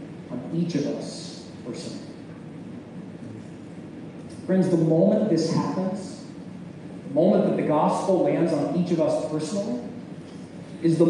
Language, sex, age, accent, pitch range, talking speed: English, male, 40-59, American, 235-315 Hz, 125 wpm